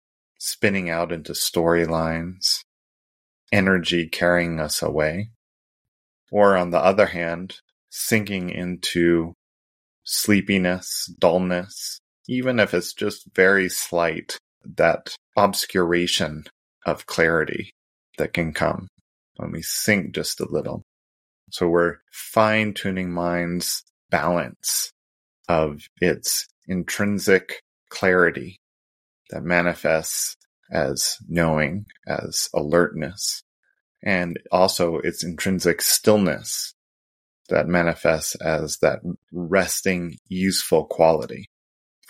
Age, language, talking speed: 30-49, English, 90 wpm